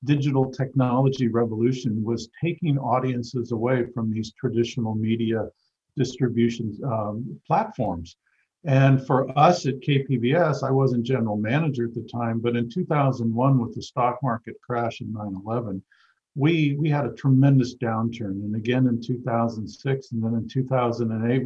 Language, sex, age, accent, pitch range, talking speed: English, male, 50-69, American, 115-135 Hz, 135 wpm